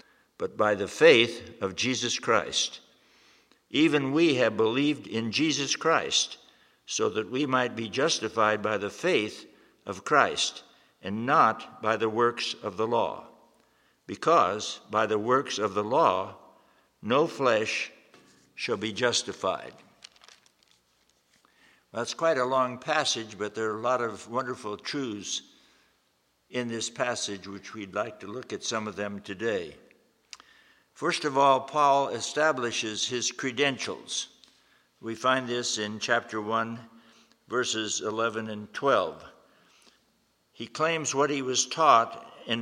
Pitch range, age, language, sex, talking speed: 110-130 Hz, 60-79, English, male, 135 wpm